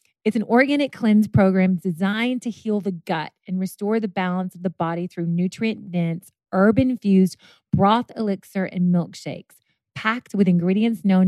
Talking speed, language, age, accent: 150 wpm, English, 30-49, American